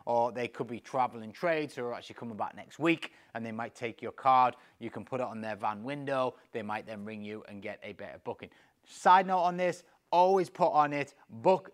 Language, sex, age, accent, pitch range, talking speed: English, male, 30-49, British, 120-165 Hz, 235 wpm